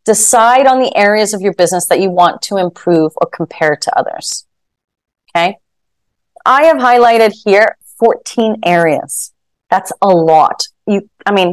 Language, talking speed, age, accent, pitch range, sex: English, 150 wpm, 30-49, American, 175-235 Hz, female